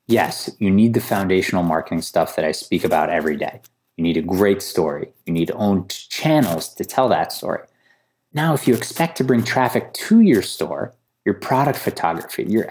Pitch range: 95-135 Hz